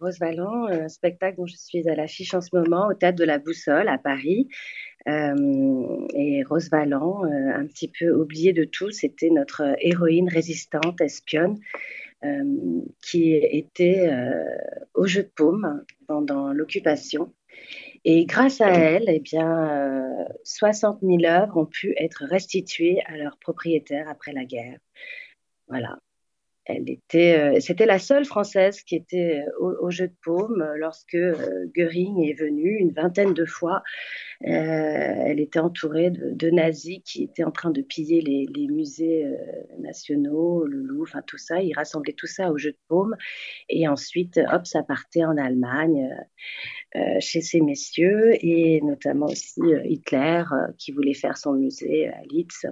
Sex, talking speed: female, 165 wpm